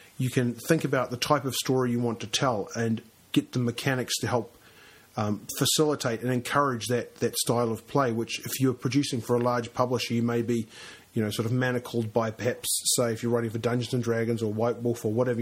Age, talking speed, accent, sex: 30-49, 225 wpm, Australian, male